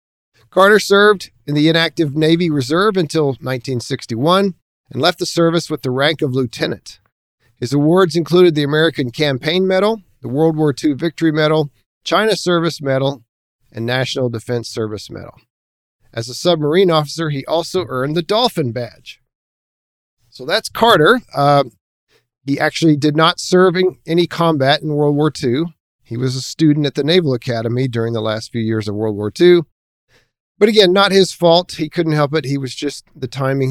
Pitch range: 120-165 Hz